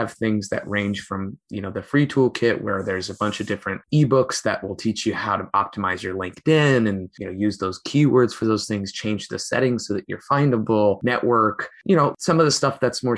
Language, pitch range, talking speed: English, 100-125 Hz, 230 wpm